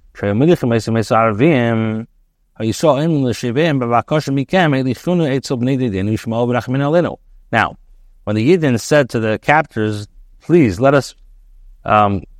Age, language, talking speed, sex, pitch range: 50-69, English, 60 wpm, male, 110-140 Hz